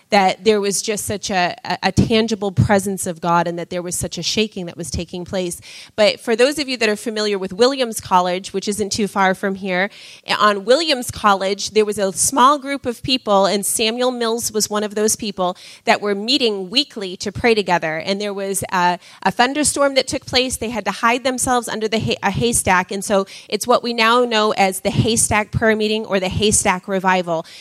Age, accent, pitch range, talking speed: 30-49, American, 195-240 Hz, 215 wpm